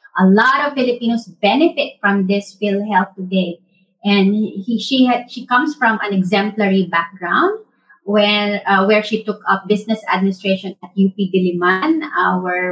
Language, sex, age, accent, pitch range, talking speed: English, female, 30-49, Filipino, 195-255 Hz, 150 wpm